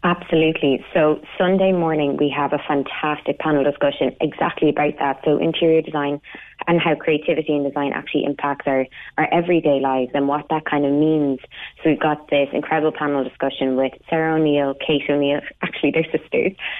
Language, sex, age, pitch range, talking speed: English, female, 20-39, 145-165 Hz, 170 wpm